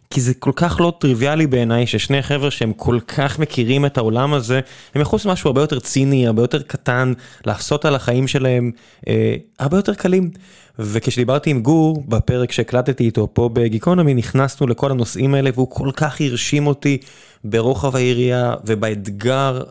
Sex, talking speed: male, 160 wpm